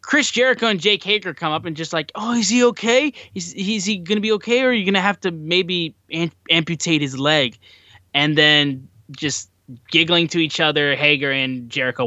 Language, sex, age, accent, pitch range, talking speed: English, male, 10-29, American, 130-170 Hz, 210 wpm